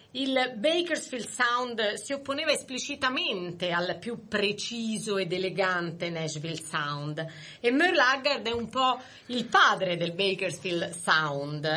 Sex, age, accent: female, 30-49, native